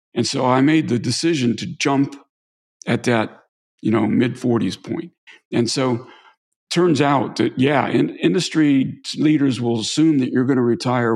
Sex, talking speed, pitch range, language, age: male, 155 wpm, 120-145 Hz, English, 50-69